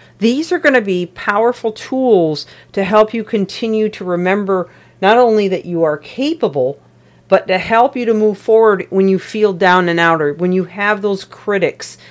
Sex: female